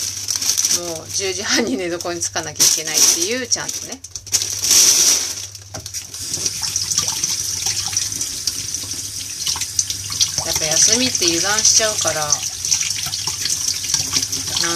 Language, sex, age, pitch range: Japanese, female, 30-49, 95-105 Hz